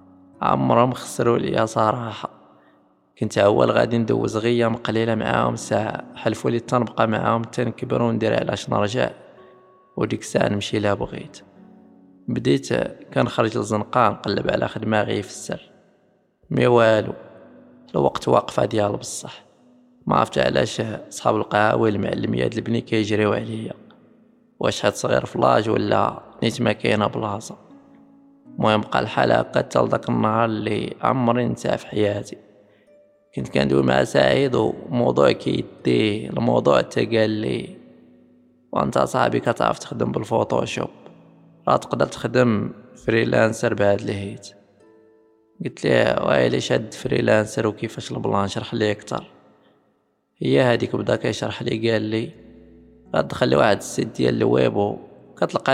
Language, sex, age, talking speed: Arabic, male, 20-39, 125 wpm